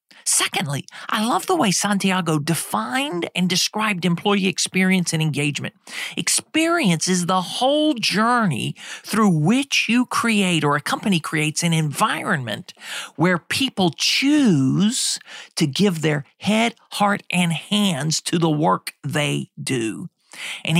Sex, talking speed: male, 125 wpm